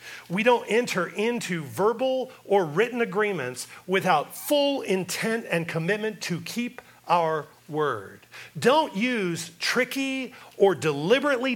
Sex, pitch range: male, 150-235 Hz